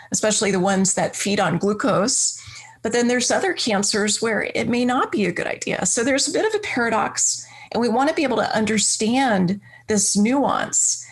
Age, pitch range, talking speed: 30-49, 195-235 Hz, 195 wpm